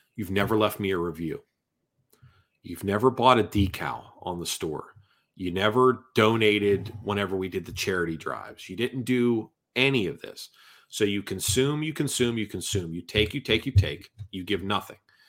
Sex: male